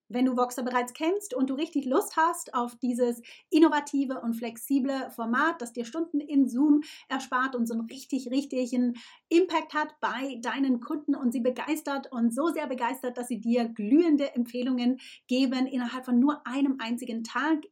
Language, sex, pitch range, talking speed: German, female, 235-280 Hz, 175 wpm